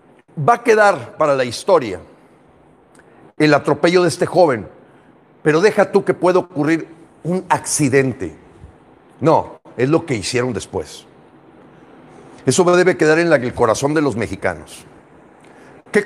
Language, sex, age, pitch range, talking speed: English, male, 50-69, 150-200 Hz, 130 wpm